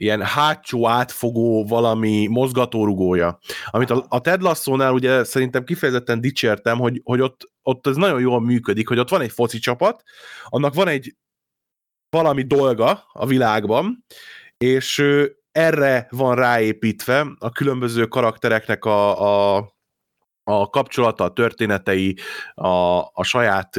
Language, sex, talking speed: Hungarian, male, 125 wpm